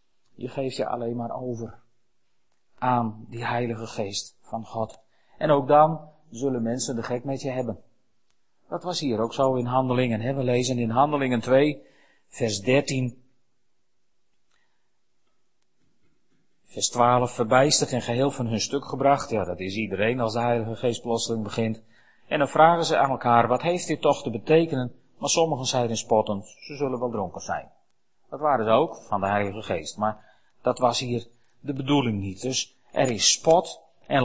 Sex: male